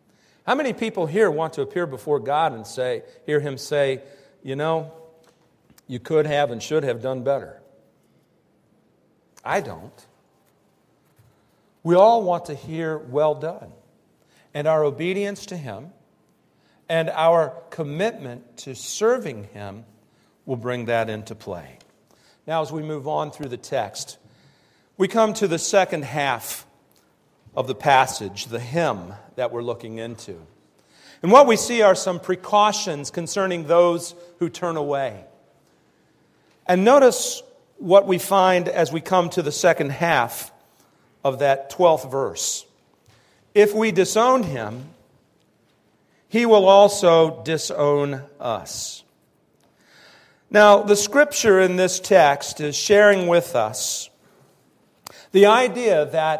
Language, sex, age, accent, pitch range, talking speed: English, male, 50-69, American, 140-195 Hz, 130 wpm